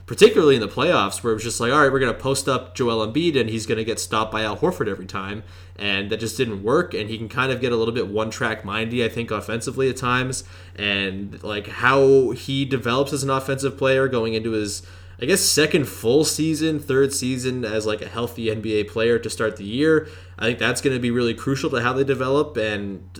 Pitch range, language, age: 105-135 Hz, English, 20-39